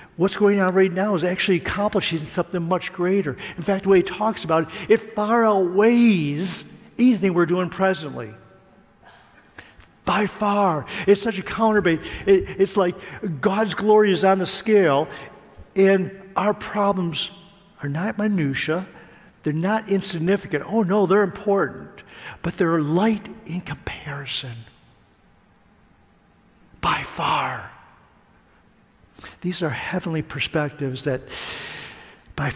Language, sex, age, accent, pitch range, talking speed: English, male, 50-69, American, 150-200 Hz, 125 wpm